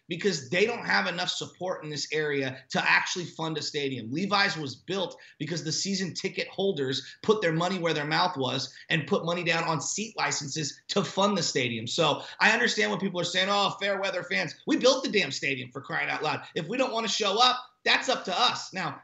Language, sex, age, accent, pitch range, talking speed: English, male, 30-49, American, 150-200 Hz, 225 wpm